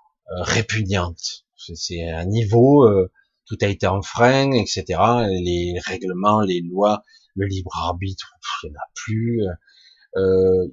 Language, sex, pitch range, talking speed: French, male, 95-130 Hz, 140 wpm